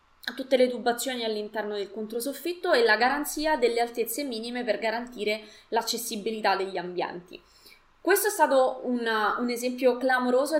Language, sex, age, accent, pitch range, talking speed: Italian, female, 20-39, native, 210-255 Hz, 135 wpm